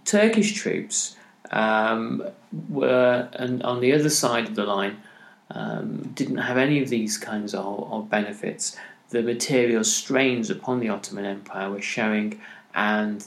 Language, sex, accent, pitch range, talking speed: English, male, British, 105-160 Hz, 145 wpm